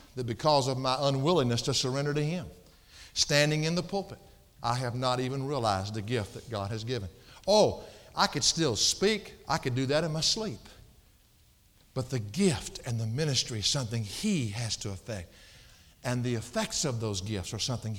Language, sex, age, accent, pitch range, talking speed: English, male, 60-79, American, 110-155 Hz, 185 wpm